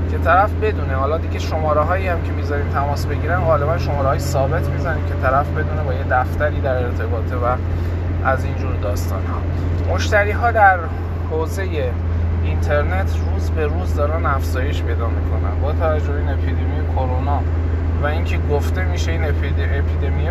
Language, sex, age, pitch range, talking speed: Persian, male, 20-39, 75-85 Hz, 160 wpm